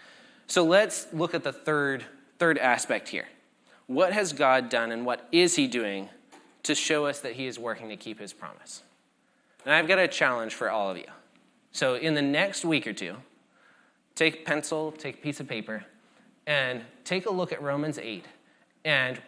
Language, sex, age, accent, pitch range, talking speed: English, male, 20-39, American, 125-165 Hz, 190 wpm